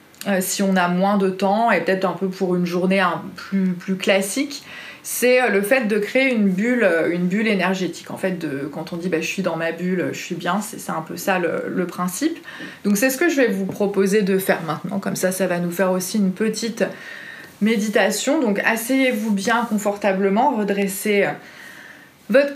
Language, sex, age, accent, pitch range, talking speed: French, female, 30-49, French, 185-225 Hz, 205 wpm